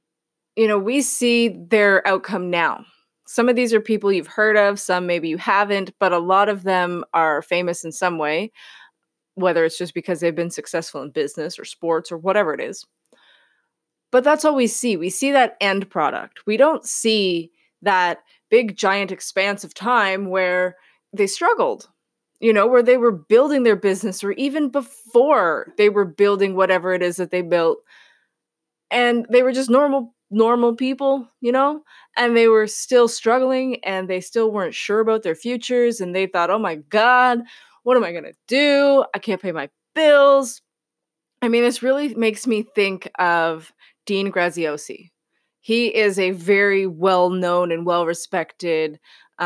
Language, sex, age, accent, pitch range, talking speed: English, female, 20-39, American, 175-240 Hz, 170 wpm